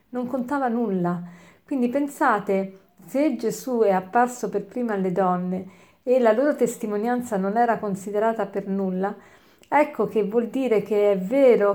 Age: 50-69